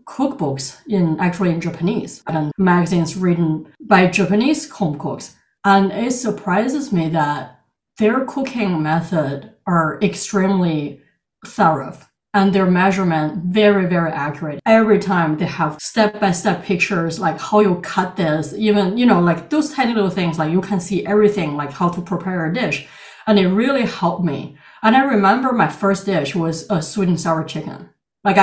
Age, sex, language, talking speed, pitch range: 30-49, female, English, 165 wpm, 165-210 Hz